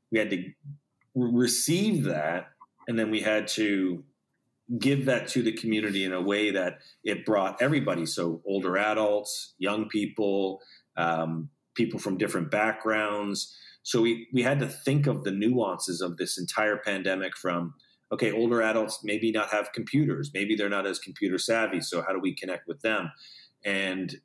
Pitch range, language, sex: 100-120 Hz, English, male